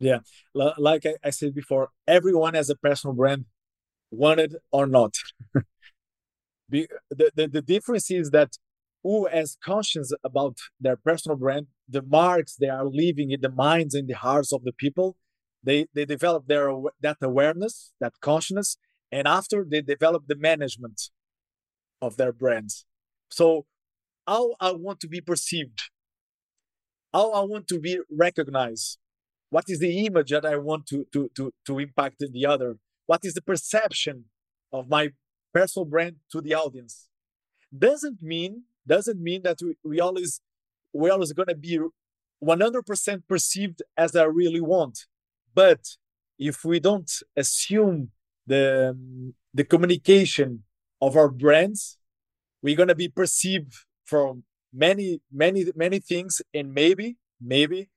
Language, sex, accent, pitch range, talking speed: English, male, Brazilian, 130-175 Hz, 145 wpm